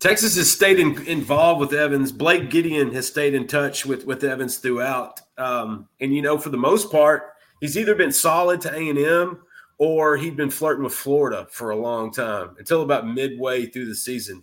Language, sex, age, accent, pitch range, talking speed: English, male, 30-49, American, 120-150 Hz, 195 wpm